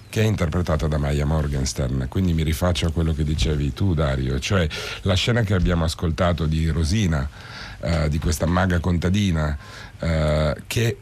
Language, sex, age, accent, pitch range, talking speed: Italian, male, 50-69, native, 80-95 Hz, 160 wpm